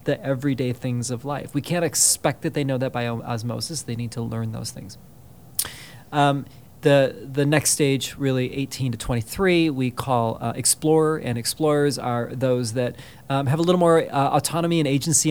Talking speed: 185 wpm